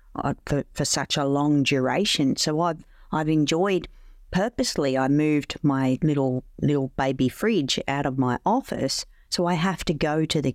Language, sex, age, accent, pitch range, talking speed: English, female, 50-69, Australian, 140-180 Hz, 165 wpm